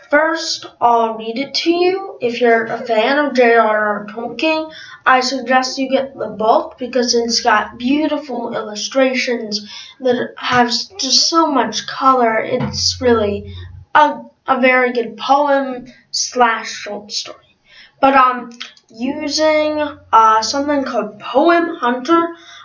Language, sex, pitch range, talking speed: English, female, 220-270 Hz, 125 wpm